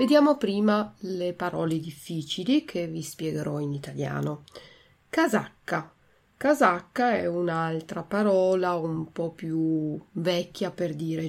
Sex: female